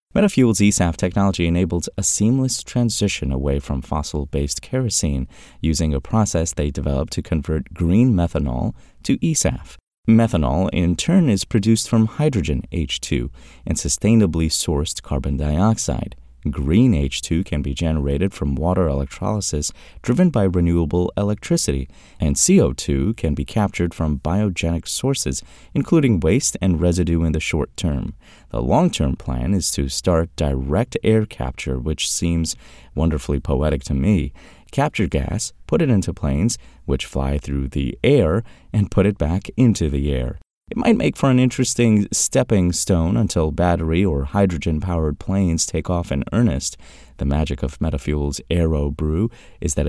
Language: English